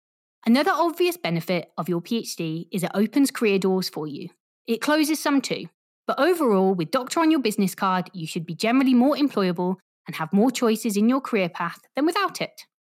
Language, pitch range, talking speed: English, 185-270 Hz, 195 wpm